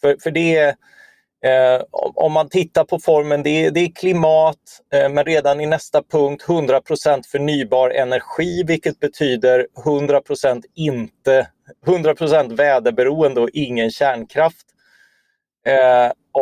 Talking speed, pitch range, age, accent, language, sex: 125 wpm, 130-175 Hz, 30-49, native, Swedish, male